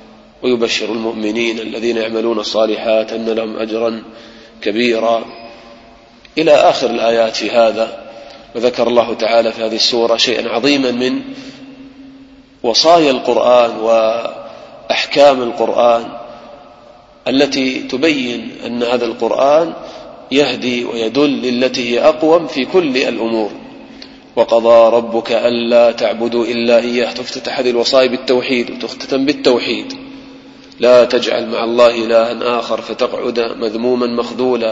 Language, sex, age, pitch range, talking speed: English, male, 30-49, 115-125 Hz, 105 wpm